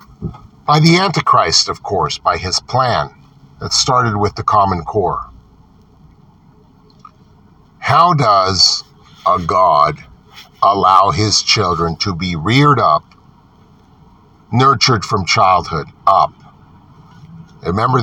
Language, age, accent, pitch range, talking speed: English, 50-69, American, 90-135 Hz, 100 wpm